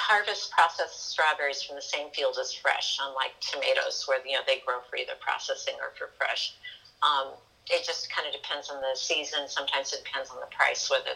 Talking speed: 205 wpm